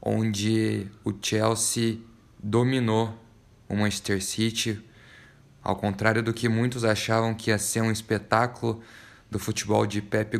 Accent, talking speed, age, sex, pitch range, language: Brazilian, 125 wpm, 20-39, male, 105-120 Hz, Portuguese